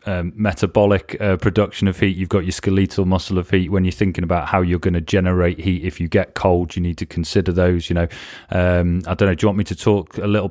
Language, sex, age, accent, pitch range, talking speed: English, male, 20-39, British, 85-100 Hz, 265 wpm